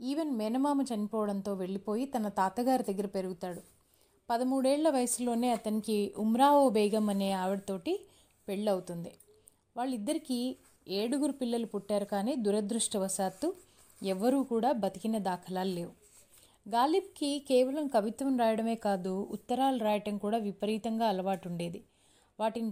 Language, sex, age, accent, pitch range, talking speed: Telugu, female, 30-49, native, 200-260 Hz, 100 wpm